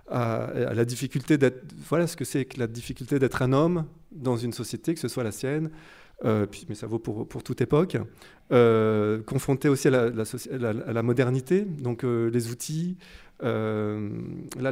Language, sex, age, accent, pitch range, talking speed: French, male, 30-49, French, 120-155 Hz, 190 wpm